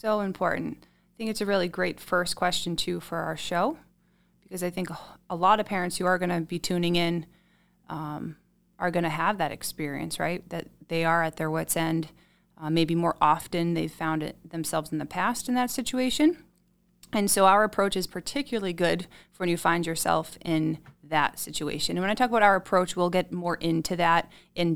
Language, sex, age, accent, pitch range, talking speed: English, female, 20-39, American, 160-185 Hz, 205 wpm